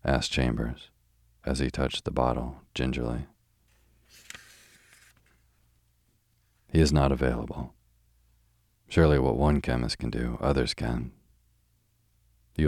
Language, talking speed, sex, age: English, 100 wpm, male, 40-59